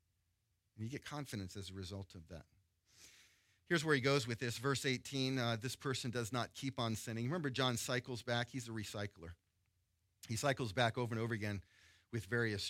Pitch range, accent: 100-120 Hz, American